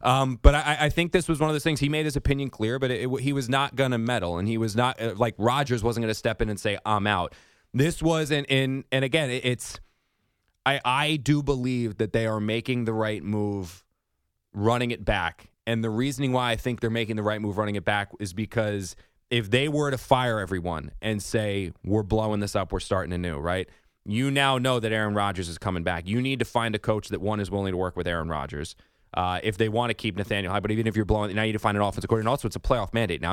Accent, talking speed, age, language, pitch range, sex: American, 265 wpm, 20-39, English, 100-130 Hz, male